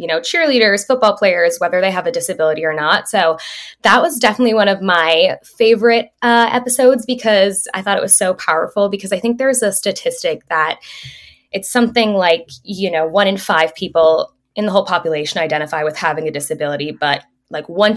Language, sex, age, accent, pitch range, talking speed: English, female, 10-29, American, 165-225 Hz, 190 wpm